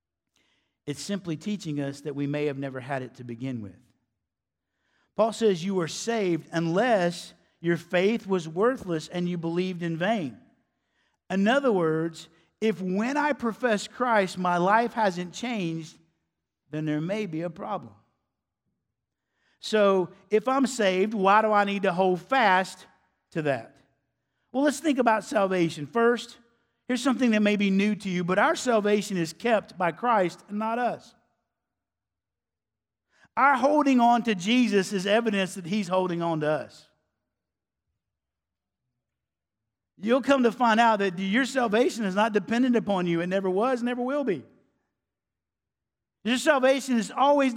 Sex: male